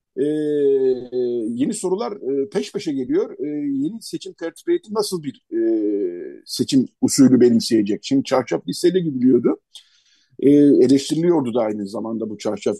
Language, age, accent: Turkish, 50-69, native